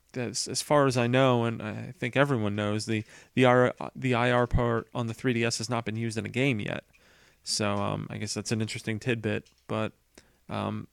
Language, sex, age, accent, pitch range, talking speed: English, male, 30-49, American, 110-130 Hz, 210 wpm